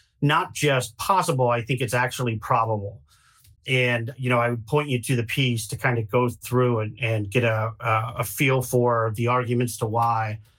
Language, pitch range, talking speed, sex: English, 115-135 Hz, 195 wpm, male